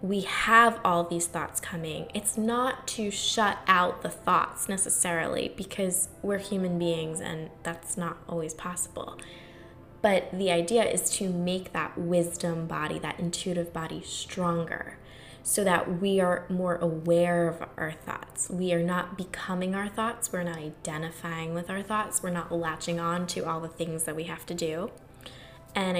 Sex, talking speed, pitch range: female, 165 wpm, 165-195 Hz